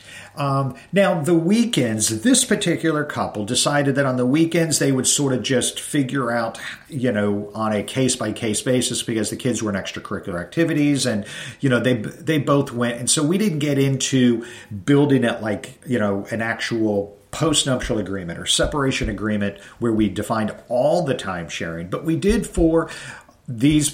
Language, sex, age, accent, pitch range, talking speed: English, male, 50-69, American, 105-150 Hz, 180 wpm